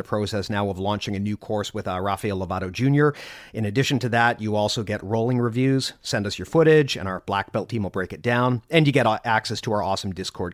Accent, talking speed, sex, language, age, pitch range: American, 240 wpm, male, English, 40-59, 105-130 Hz